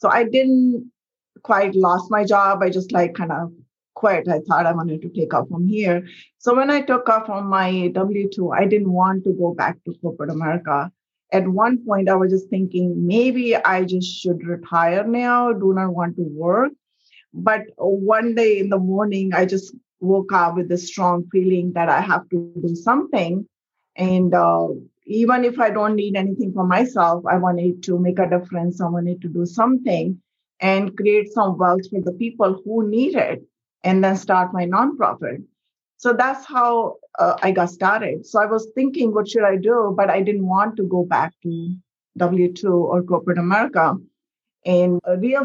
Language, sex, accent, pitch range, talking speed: English, female, Indian, 180-215 Hz, 185 wpm